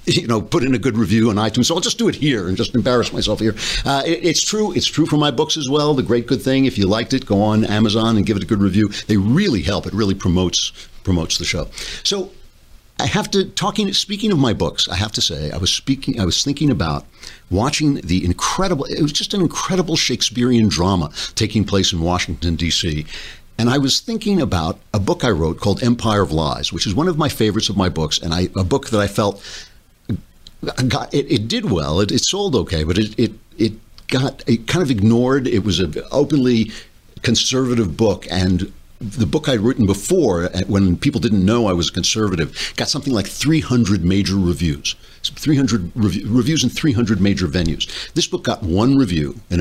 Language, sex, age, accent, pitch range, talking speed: English, male, 60-79, American, 95-130 Hz, 215 wpm